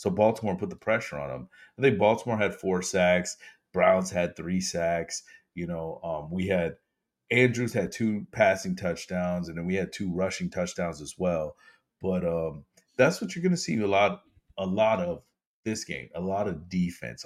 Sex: male